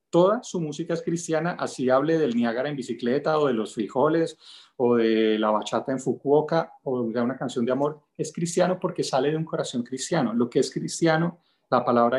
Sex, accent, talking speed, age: male, Colombian, 200 wpm, 30-49